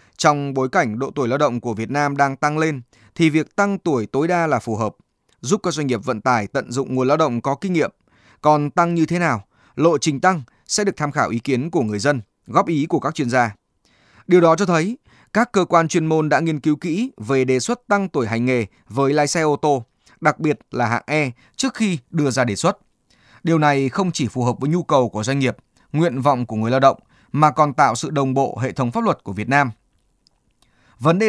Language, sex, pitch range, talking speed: Vietnamese, male, 125-165 Hz, 245 wpm